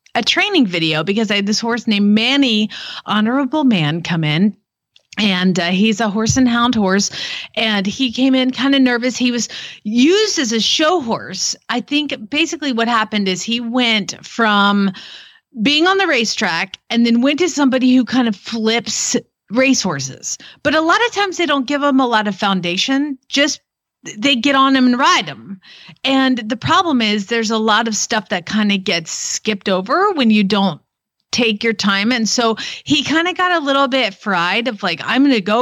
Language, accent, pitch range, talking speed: English, American, 205-270 Hz, 195 wpm